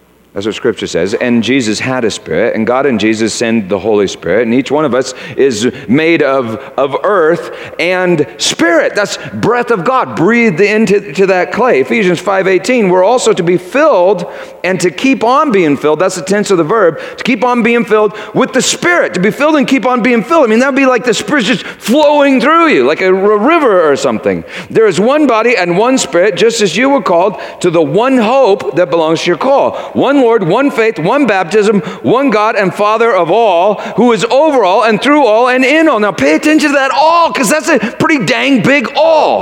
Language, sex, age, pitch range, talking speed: English, male, 40-59, 160-265 Hz, 220 wpm